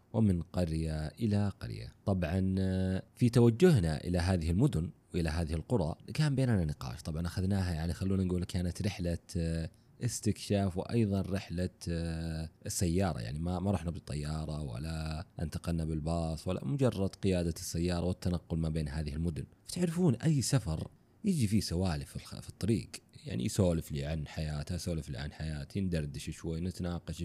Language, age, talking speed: Arabic, 30-49, 130 wpm